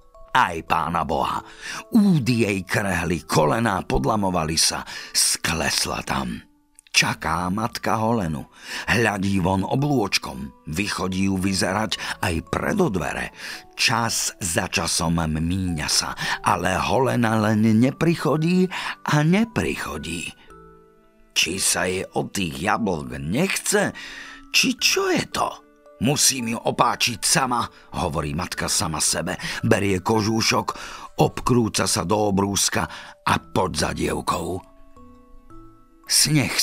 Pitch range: 90-125 Hz